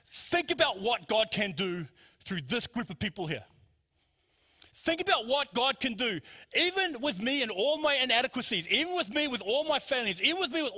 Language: English